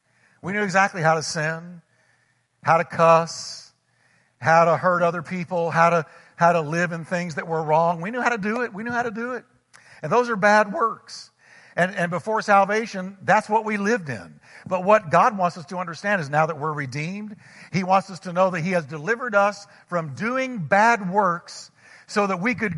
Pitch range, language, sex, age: 160-200 Hz, English, male, 50-69